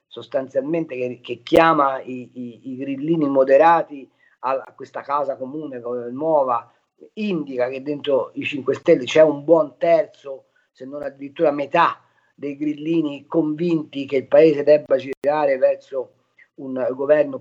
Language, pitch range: Italian, 150-220 Hz